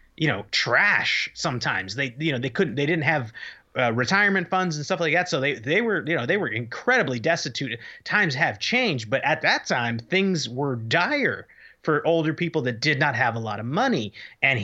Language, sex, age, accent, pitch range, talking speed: English, male, 30-49, American, 125-170 Hz, 210 wpm